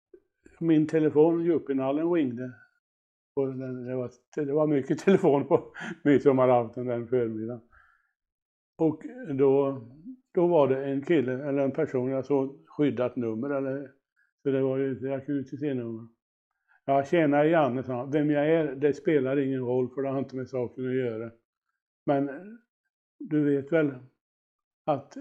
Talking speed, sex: 155 wpm, male